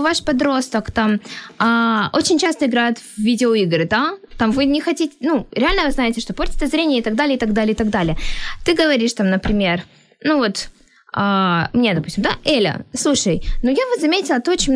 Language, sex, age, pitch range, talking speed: Ukrainian, female, 10-29, 215-290 Hz, 195 wpm